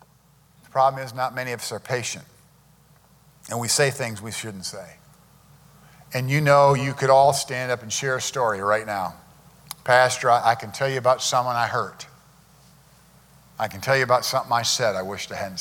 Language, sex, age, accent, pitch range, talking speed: English, male, 50-69, American, 125-160 Hz, 190 wpm